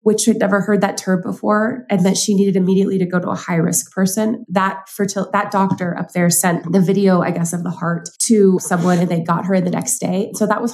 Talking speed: 250 wpm